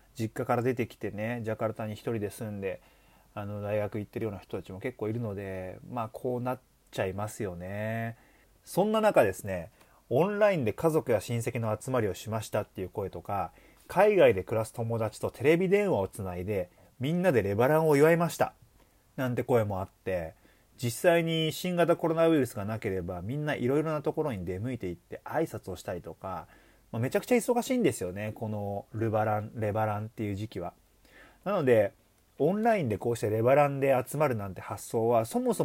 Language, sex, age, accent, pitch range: Japanese, male, 30-49, native, 105-150 Hz